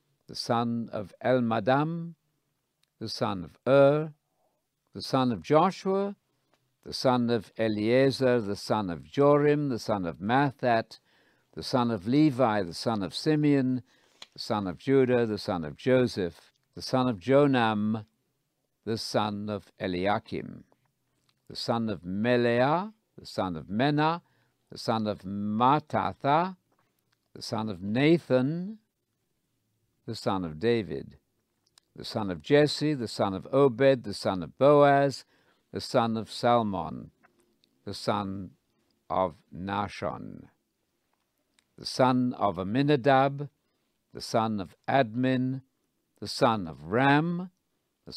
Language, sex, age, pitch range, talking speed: English, male, 60-79, 110-145 Hz, 125 wpm